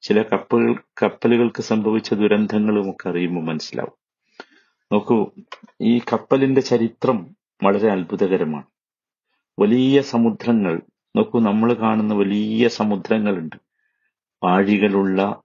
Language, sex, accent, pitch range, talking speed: Malayalam, male, native, 100-120 Hz, 80 wpm